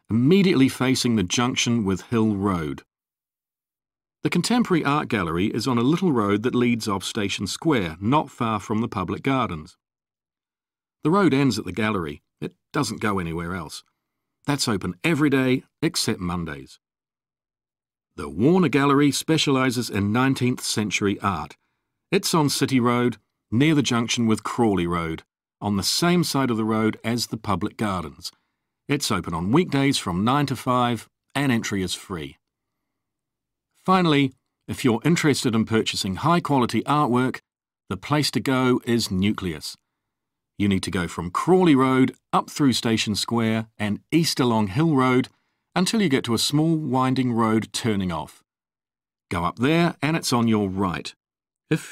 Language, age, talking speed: English, 50-69, 155 wpm